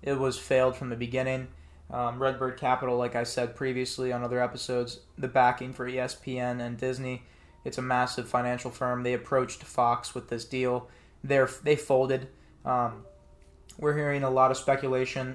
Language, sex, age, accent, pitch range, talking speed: English, male, 20-39, American, 125-140 Hz, 165 wpm